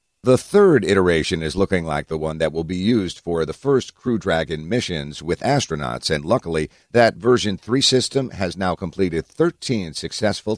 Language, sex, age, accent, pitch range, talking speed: English, male, 50-69, American, 80-120 Hz, 175 wpm